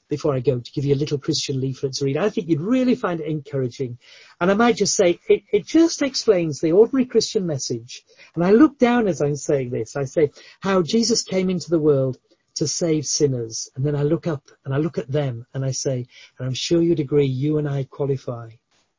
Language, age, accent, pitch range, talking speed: English, 40-59, British, 140-220 Hz, 230 wpm